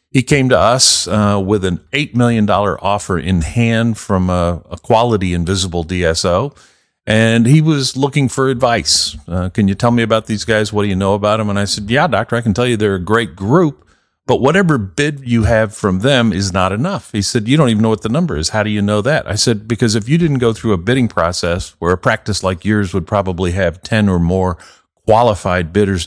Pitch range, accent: 95-125 Hz, American